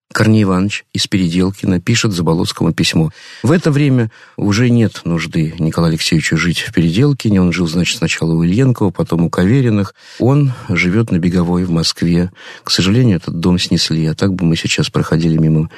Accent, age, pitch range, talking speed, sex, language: native, 50-69, 90-130 Hz, 170 wpm, male, Russian